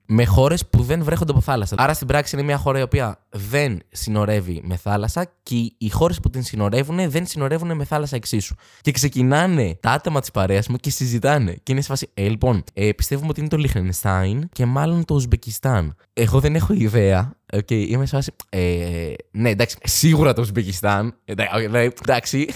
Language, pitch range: Greek, 105-145 Hz